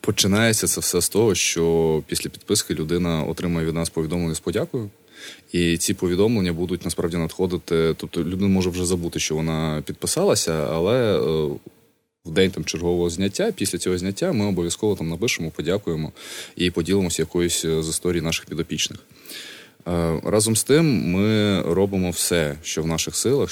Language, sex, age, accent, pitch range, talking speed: Ukrainian, male, 20-39, native, 80-90 Hz, 150 wpm